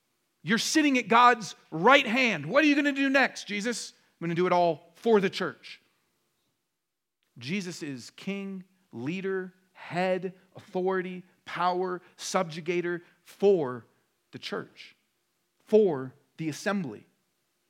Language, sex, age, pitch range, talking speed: English, male, 40-59, 140-195 Hz, 125 wpm